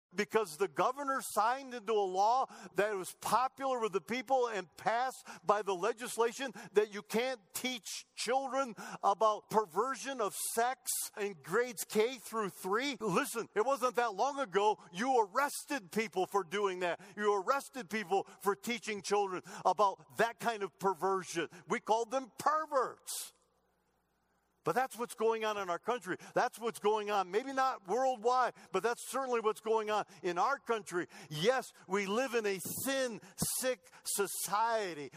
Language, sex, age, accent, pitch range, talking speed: English, male, 50-69, American, 175-240 Hz, 155 wpm